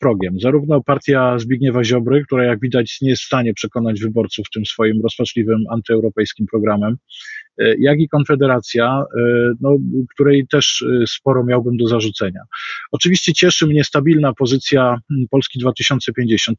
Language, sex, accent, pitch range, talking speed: Polish, male, native, 120-145 Hz, 125 wpm